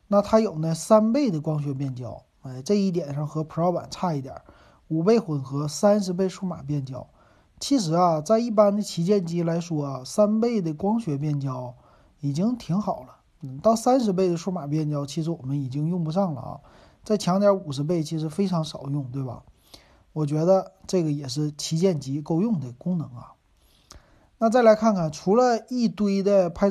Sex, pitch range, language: male, 145-200 Hz, Chinese